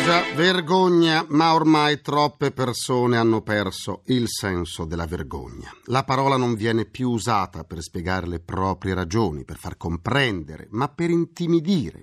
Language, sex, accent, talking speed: Italian, male, native, 145 wpm